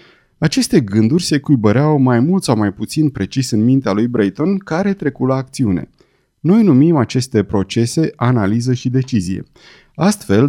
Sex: male